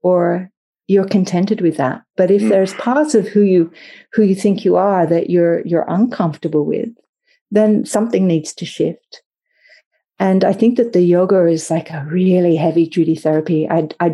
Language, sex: English, female